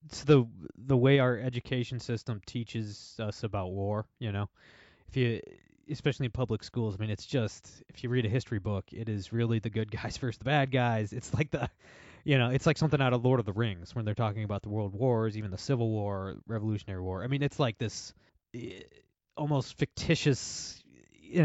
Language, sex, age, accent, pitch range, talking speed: English, male, 20-39, American, 105-145 Hz, 210 wpm